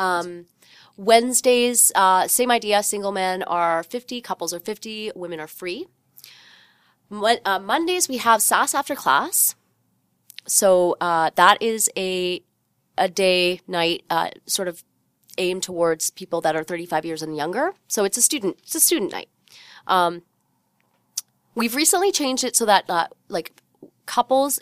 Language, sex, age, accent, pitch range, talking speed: English, female, 30-49, American, 170-225 Hz, 150 wpm